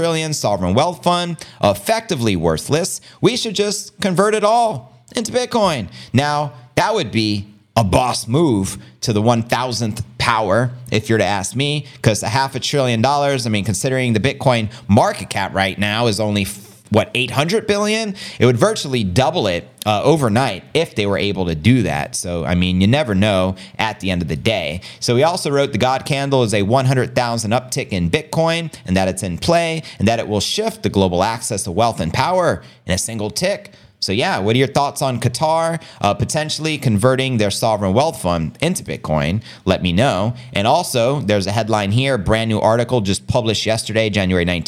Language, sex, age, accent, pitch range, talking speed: English, male, 30-49, American, 100-145 Hz, 195 wpm